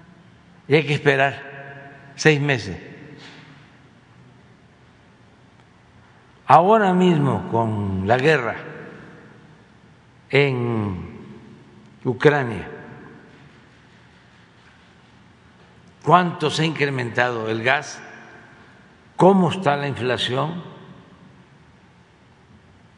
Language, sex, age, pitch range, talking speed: Spanish, male, 60-79, 135-180 Hz, 60 wpm